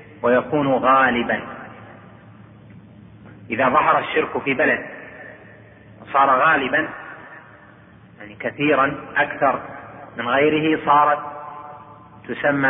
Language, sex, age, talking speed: Arabic, male, 30-49, 75 wpm